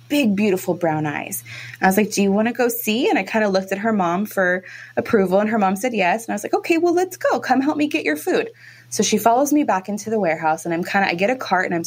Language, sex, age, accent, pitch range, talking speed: English, female, 20-39, American, 170-220 Hz, 305 wpm